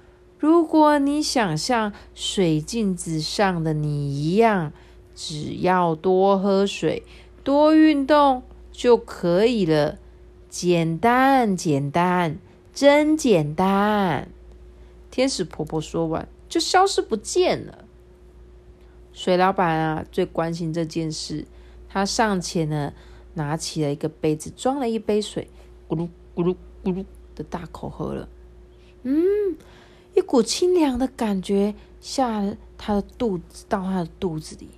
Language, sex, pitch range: Chinese, female, 150-230 Hz